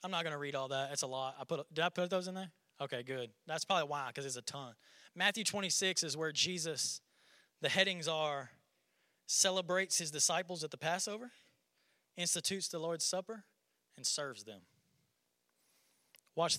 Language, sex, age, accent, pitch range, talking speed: English, male, 20-39, American, 120-170 Hz, 175 wpm